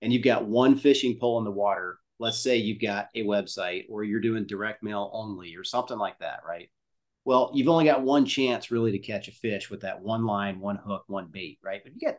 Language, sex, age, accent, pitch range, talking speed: English, male, 40-59, American, 100-125 Hz, 240 wpm